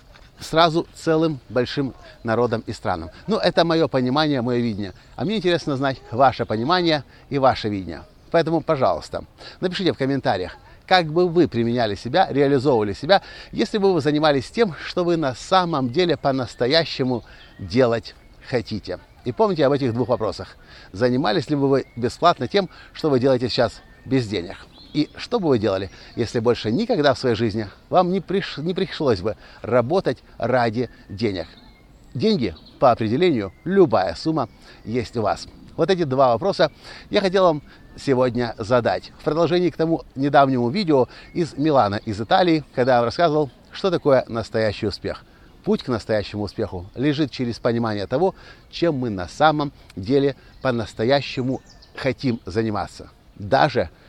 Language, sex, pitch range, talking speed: Russian, male, 115-160 Hz, 150 wpm